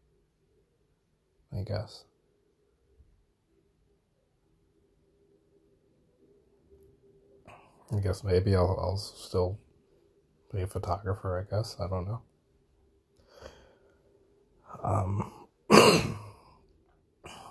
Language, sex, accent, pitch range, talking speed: English, male, American, 90-110 Hz, 60 wpm